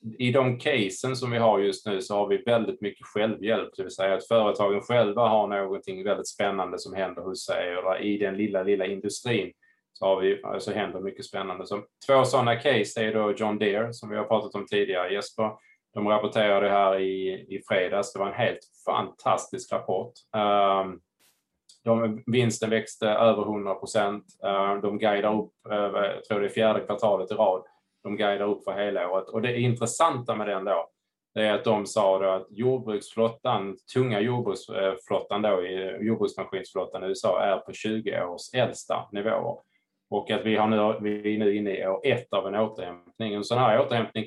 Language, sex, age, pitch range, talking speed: Swedish, male, 20-39, 100-115 Hz, 185 wpm